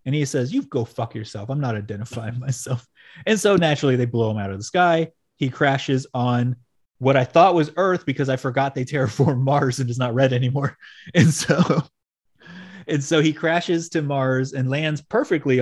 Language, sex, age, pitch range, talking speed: English, male, 30-49, 125-160 Hz, 195 wpm